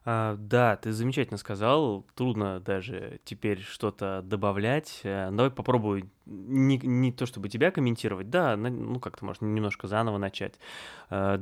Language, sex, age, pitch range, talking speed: Russian, male, 20-39, 100-120 Hz, 125 wpm